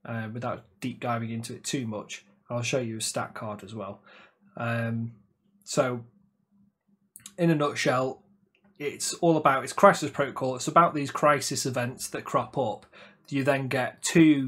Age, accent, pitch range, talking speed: 20-39, British, 120-155 Hz, 160 wpm